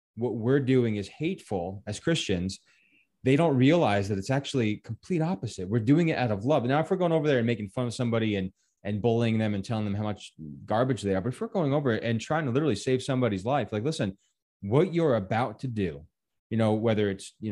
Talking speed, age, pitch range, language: 235 wpm, 20-39, 105-135 Hz, English